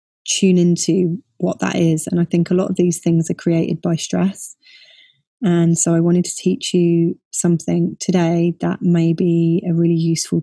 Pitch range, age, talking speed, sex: 170-195 Hz, 20-39, 185 wpm, female